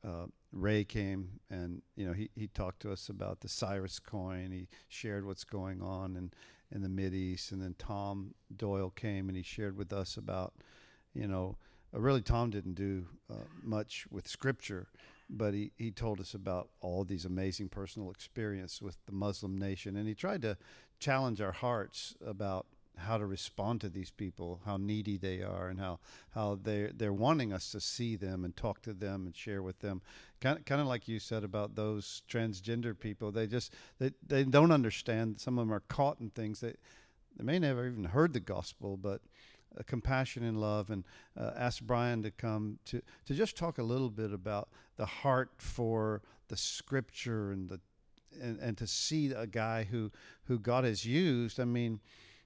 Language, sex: English, male